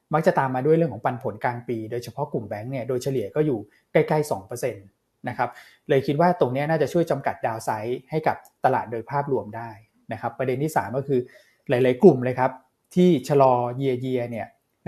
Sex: male